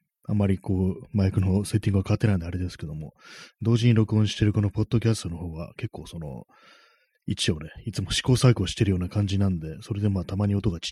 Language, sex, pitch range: Japanese, male, 90-115 Hz